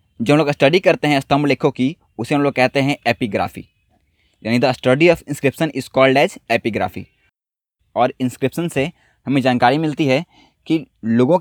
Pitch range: 120-150 Hz